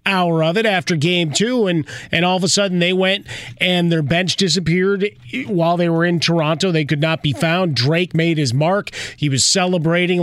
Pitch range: 155-180 Hz